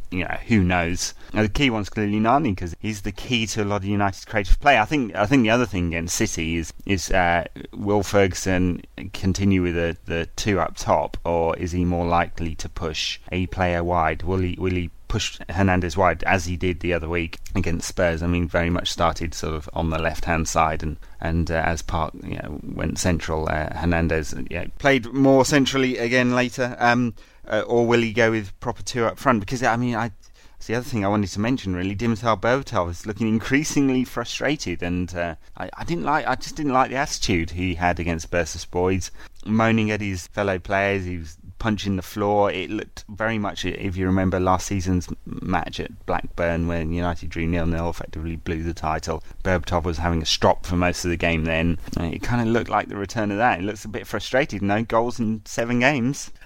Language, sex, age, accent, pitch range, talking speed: English, male, 30-49, British, 85-110 Hz, 215 wpm